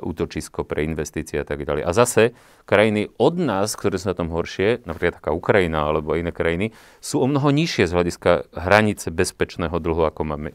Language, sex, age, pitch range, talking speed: Slovak, male, 30-49, 85-115 Hz, 190 wpm